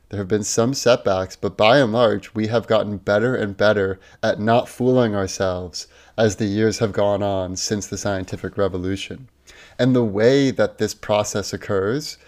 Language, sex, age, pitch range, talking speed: English, male, 30-49, 100-120 Hz, 175 wpm